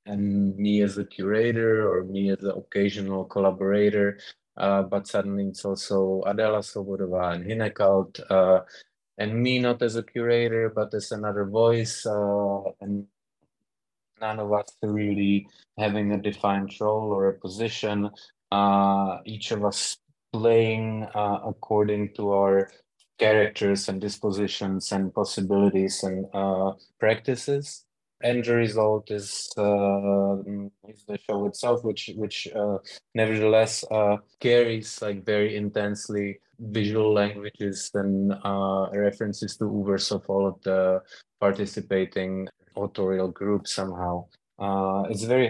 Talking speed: 130 wpm